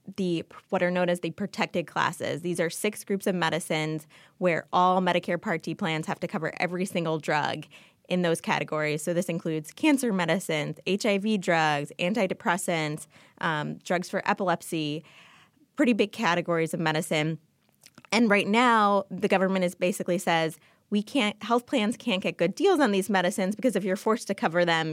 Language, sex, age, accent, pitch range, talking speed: English, female, 20-39, American, 170-210 Hz, 175 wpm